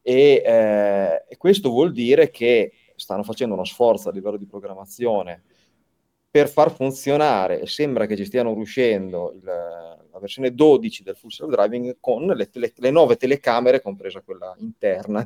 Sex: male